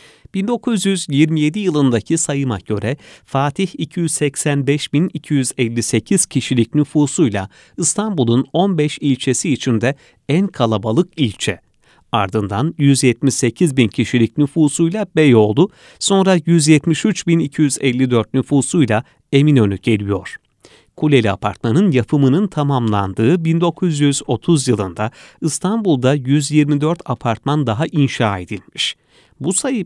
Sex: male